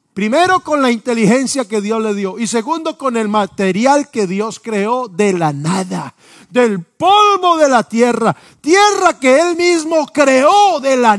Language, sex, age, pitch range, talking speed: Spanish, male, 50-69, 180-295 Hz, 165 wpm